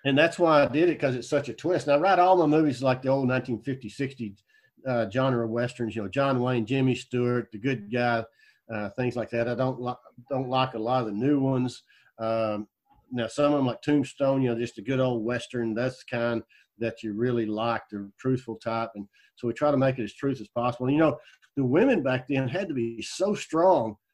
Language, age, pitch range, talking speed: English, 50-69, 120-140 Hz, 240 wpm